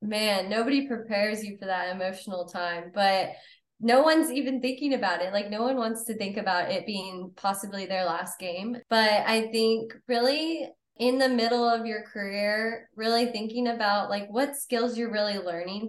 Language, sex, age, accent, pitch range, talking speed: English, female, 20-39, American, 190-230 Hz, 180 wpm